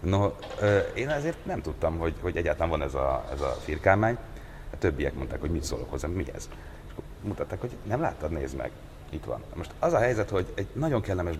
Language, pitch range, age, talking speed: Hungarian, 70-85 Hz, 30-49, 205 wpm